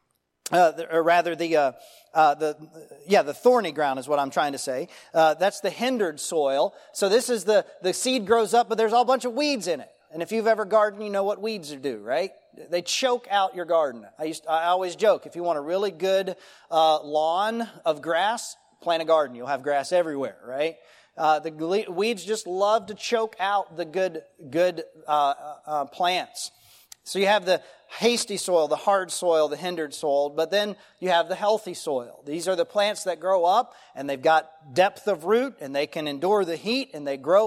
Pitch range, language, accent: 155-215 Hz, English, American